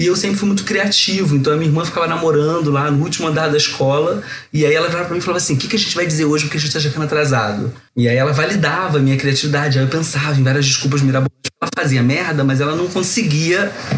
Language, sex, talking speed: Portuguese, male, 265 wpm